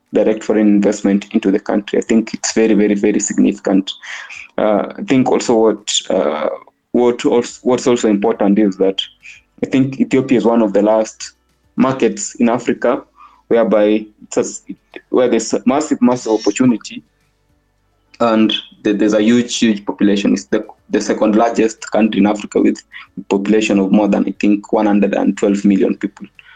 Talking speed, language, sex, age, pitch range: 160 wpm, English, male, 20-39, 100-115 Hz